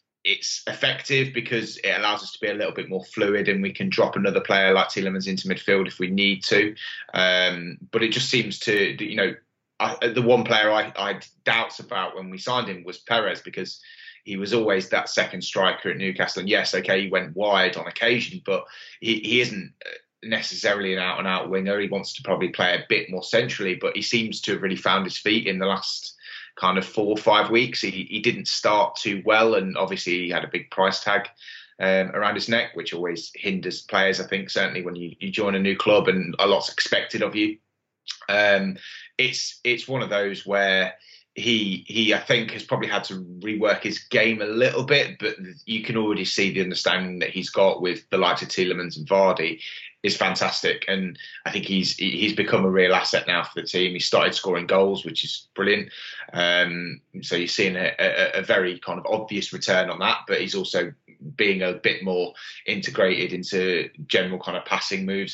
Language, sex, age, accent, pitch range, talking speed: English, male, 20-39, British, 95-110 Hz, 205 wpm